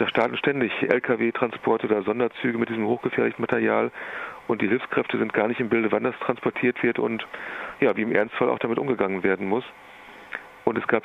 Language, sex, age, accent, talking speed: German, male, 40-59, German, 190 wpm